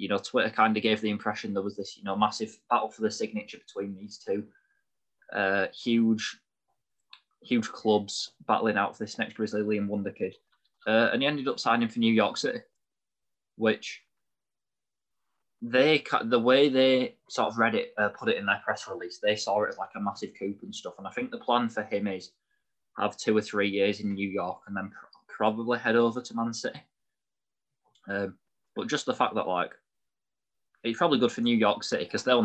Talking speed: 200 wpm